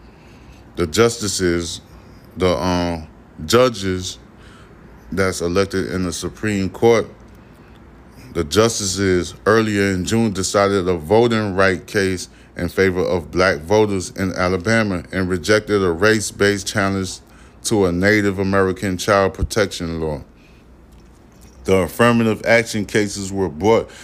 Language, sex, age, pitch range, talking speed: English, male, 20-39, 85-105 Hz, 115 wpm